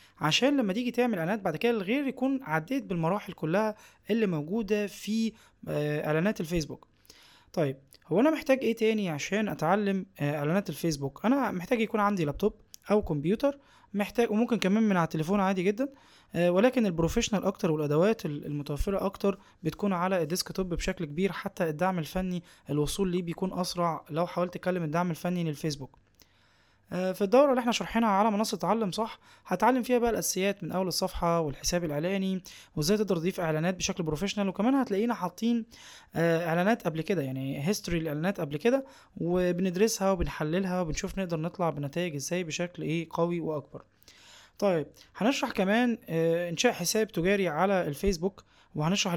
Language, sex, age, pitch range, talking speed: Arabic, male, 20-39, 165-210 Hz, 150 wpm